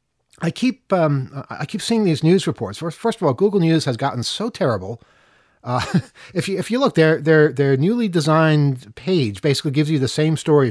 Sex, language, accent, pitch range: male, English, American, 135-175 Hz